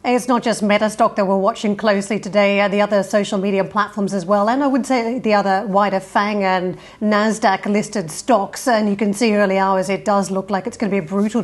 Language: English